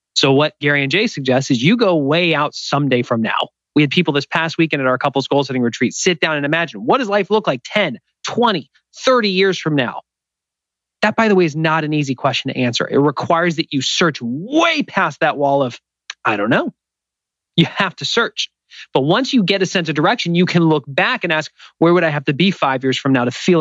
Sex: male